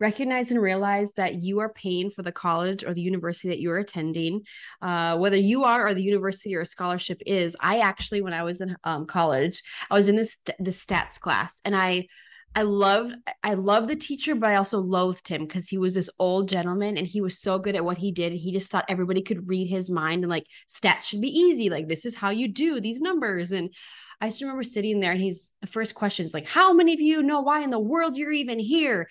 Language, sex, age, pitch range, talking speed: English, female, 20-39, 180-230 Hz, 245 wpm